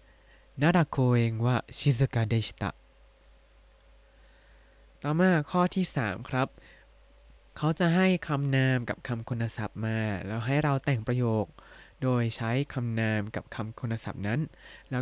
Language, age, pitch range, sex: Thai, 20-39, 115-150 Hz, male